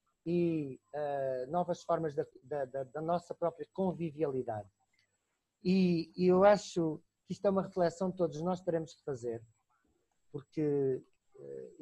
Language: Portuguese